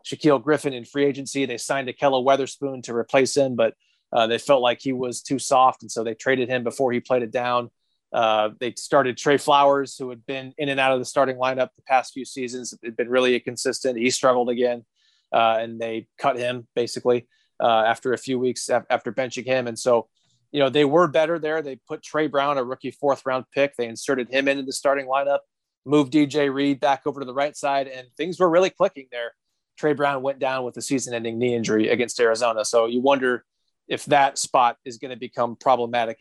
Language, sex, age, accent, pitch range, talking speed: English, male, 30-49, American, 120-140 Hz, 215 wpm